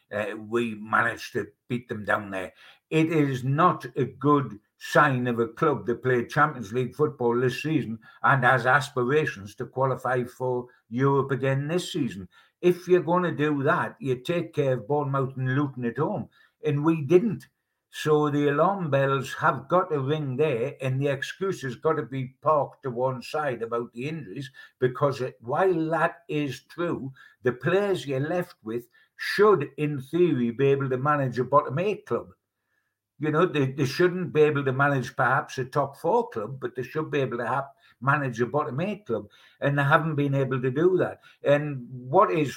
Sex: male